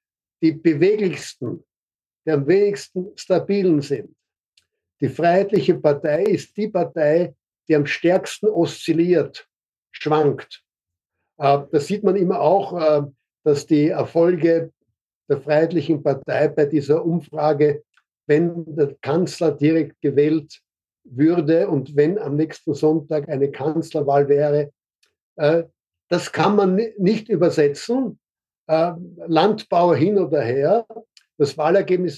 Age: 60-79